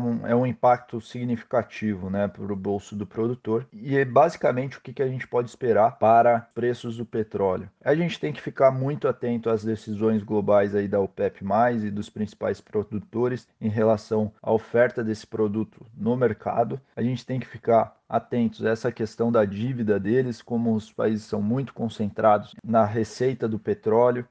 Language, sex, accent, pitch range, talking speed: Portuguese, male, Brazilian, 110-120 Hz, 170 wpm